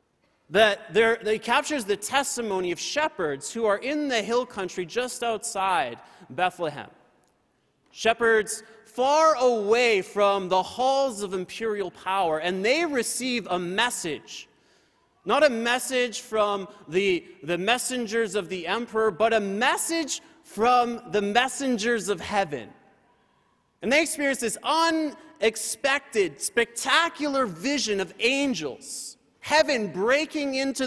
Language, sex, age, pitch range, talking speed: English, male, 30-49, 200-265 Hz, 115 wpm